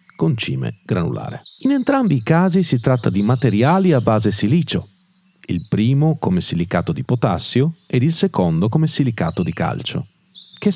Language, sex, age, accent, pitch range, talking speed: Italian, male, 40-59, native, 95-150 Hz, 155 wpm